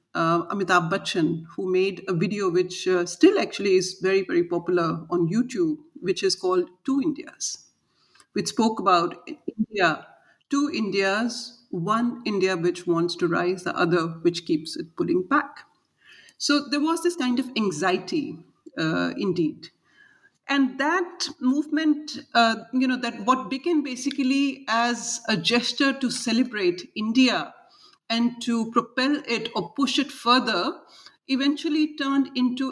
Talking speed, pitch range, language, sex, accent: 140 wpm, 185-275 Hz, English, female, Indian